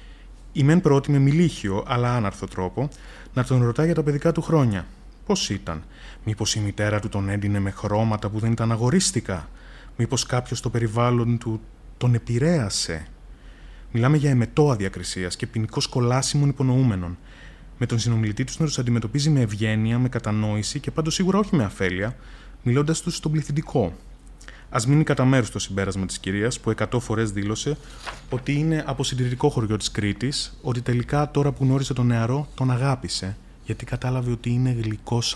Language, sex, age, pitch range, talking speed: Greek, male, 20-39, 105-140 Hz, 165 wpm